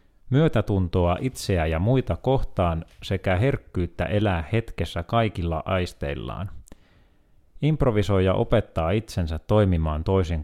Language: Finnish